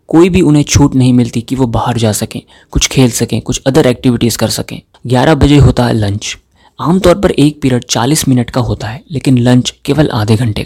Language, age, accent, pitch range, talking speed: Hindi, 30-49, native, 115-145 Hz, 215 wpm